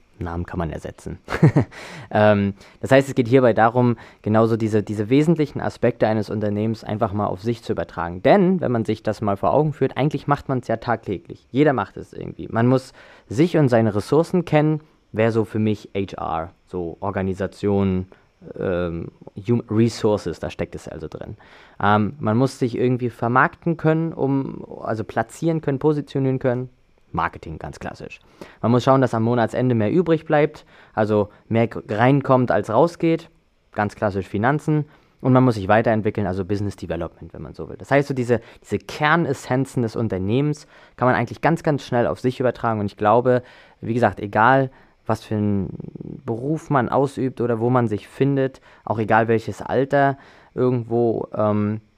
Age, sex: 20-39, male